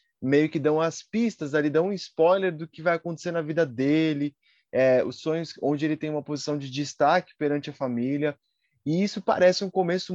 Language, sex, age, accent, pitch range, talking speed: Portuguese, male, 20-39, Brazilian, 145-180 Hz, 200 wpm